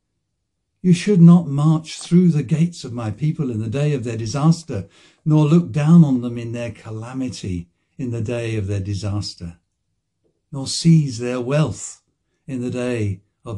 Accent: British